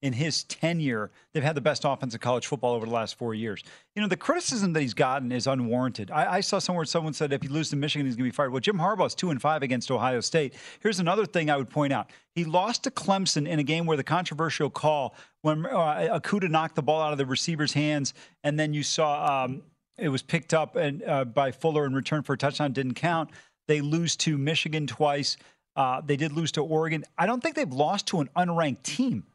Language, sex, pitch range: English, male, 145-190 Hz